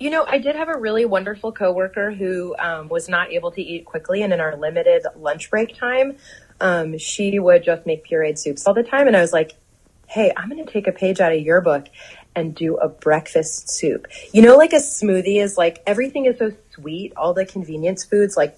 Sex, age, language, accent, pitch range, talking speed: female, 30-49, English, American, 160-215 Hz, 225 wpm